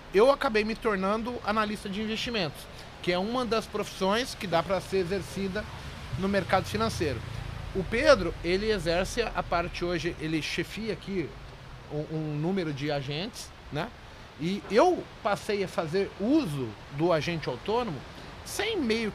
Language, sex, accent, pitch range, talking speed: Portuguese, male, Brazilian, 170-225 Hz, 145 wpm